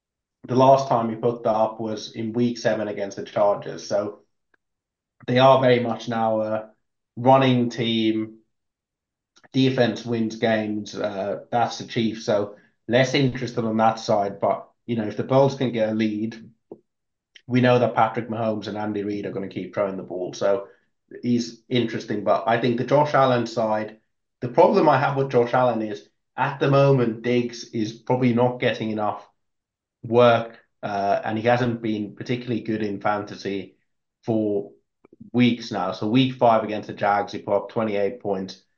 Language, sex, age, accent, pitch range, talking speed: English, male, 30-49, British, 105-125 Hz, 175 wpm